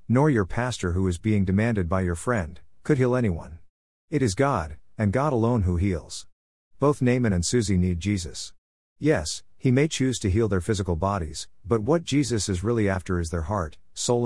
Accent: American